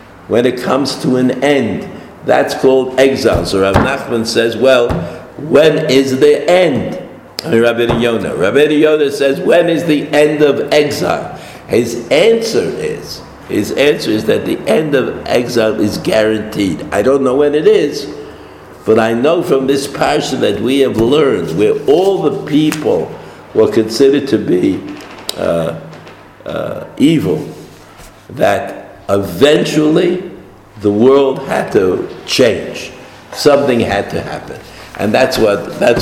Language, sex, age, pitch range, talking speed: English, male, 60-79, 110-145 Hz, 140 wpm